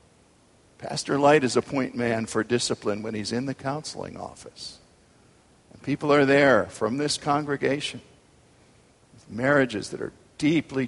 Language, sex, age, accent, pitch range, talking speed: English, male, 50-69, American, 115-145 Hz, 145 wpm